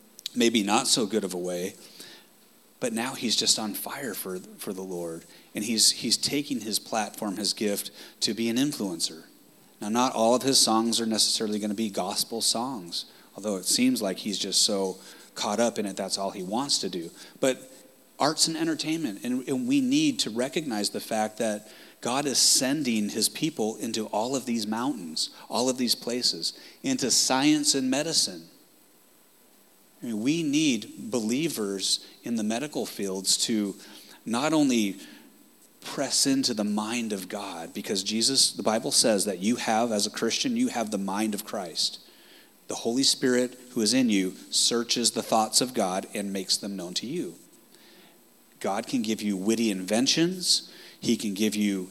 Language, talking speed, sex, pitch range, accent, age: English, 175 wpm, male, 105-135 Hz, American, 30-49